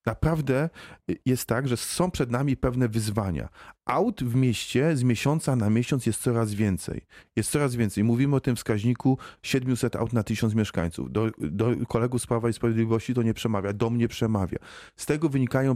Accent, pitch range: native, 115-150 Hz